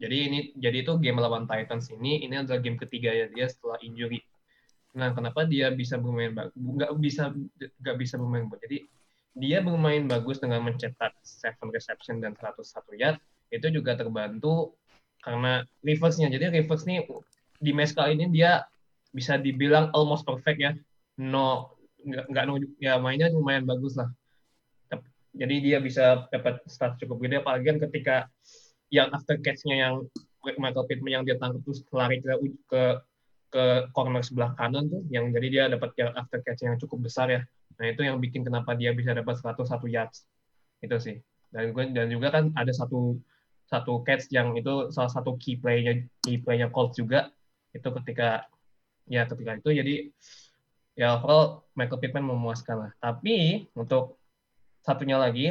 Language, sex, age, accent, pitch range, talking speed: Indonesian, male, 20-39, native, 120-140 Hz, 160 wpm